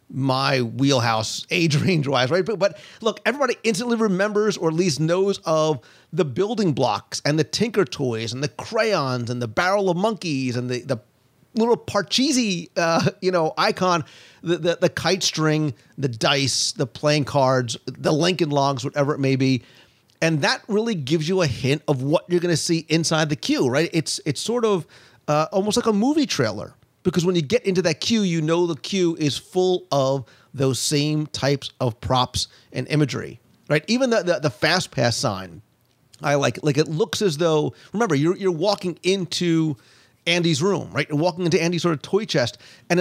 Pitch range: 135-185 Hz